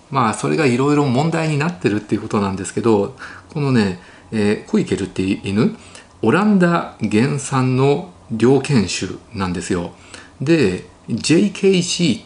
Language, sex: Japanese, male